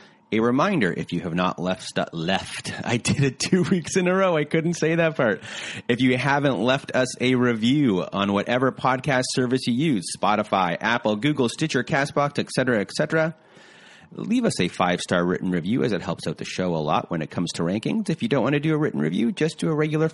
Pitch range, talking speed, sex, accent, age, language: 105-145 Hz, 225 wpm, male, American, 30-49, English